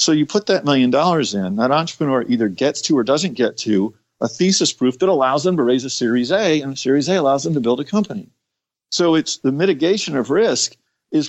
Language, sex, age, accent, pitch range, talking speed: English, male, 50-69, American, 120-155 Hz, 230 wpm